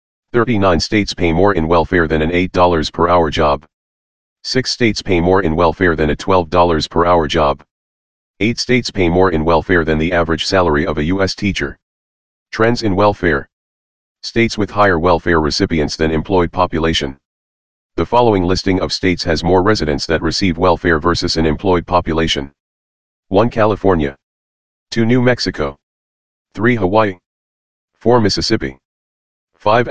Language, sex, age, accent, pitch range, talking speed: English, male, 40-59, American, 70-95 Hz, 140 wpm